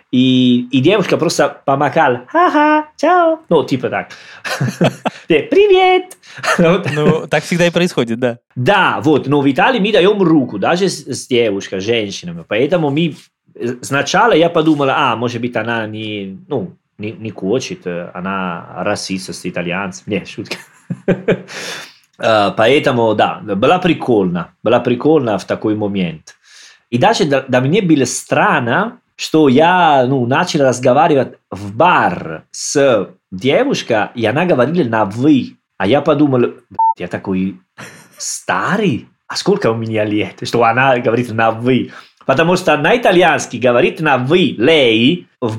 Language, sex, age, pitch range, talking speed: Russian, male, 20-39, 105-155 Hz, 130 wpm